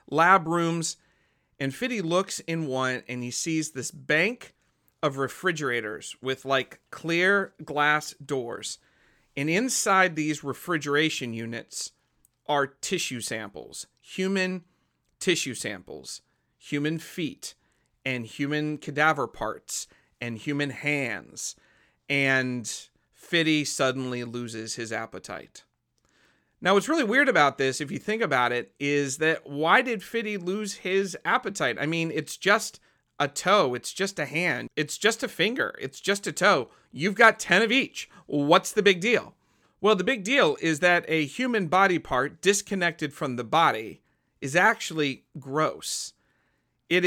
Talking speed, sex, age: 140 wpm, male, 40-59